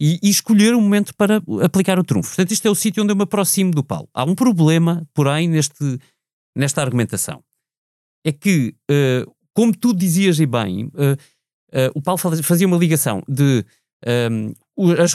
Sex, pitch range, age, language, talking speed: male, 140-195 Hz, 30-49, Portuguese, 160 wpm